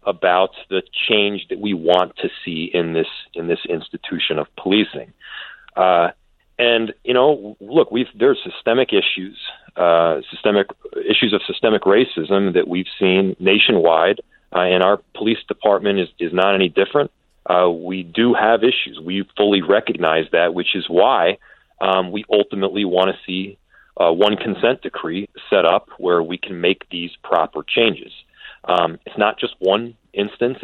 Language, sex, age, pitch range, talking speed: English, male, 40-59, 85-100 Hz, 165 wpm